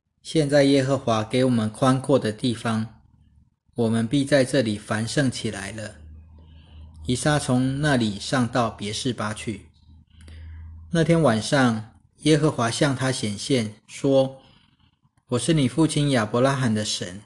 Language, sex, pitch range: Chinese, male, 110-130 Hz